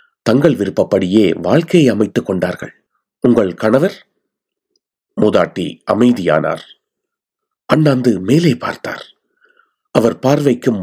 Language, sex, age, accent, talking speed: Tamil, male, 40-59, native, 80 wpm